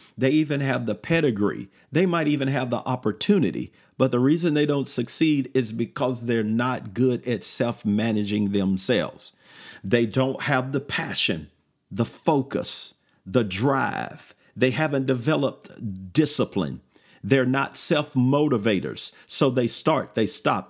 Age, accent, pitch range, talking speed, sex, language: 50-69, American, 110-140 Hz, 140 wpm, male, English